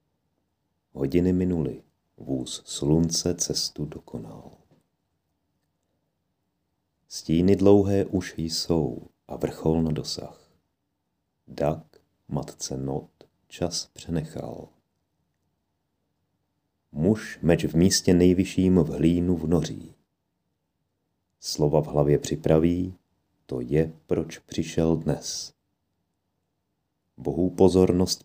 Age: 40-59